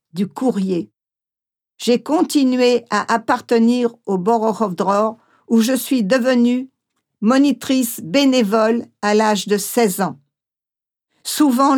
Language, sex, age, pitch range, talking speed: English, female, 50-69, 205-250 Hz, 100 wpm